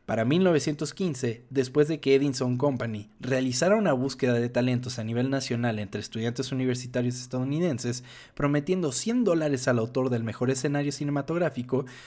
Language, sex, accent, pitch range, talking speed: Spanish, male, Mexican, 125-160 Hz, 140 wpm